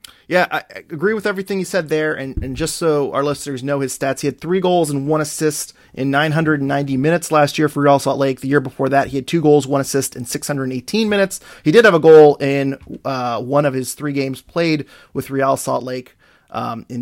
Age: 30-49